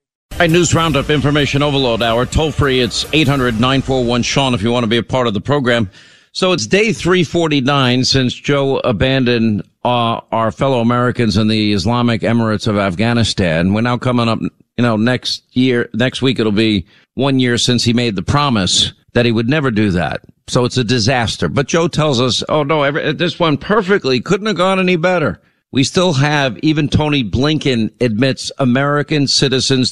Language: English